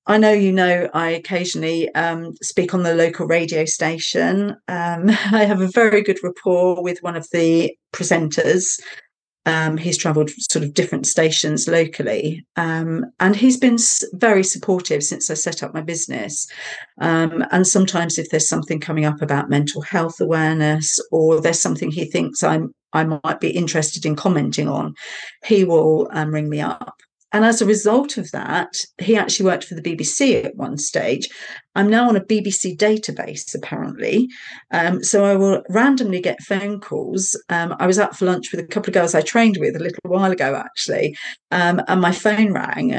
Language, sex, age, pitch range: English, female, 40-59, 160-205 Hz